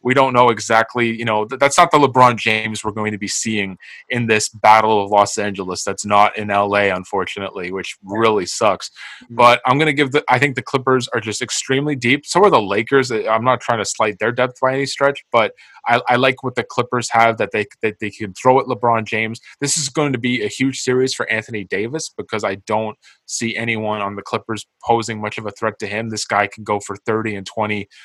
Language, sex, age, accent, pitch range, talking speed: English, male, 20-39, American, 110-130 Hz, 230 wpm